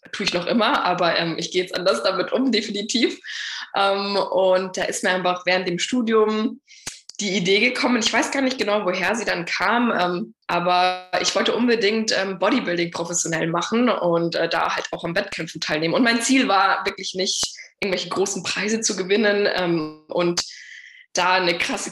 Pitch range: 175-220 Hz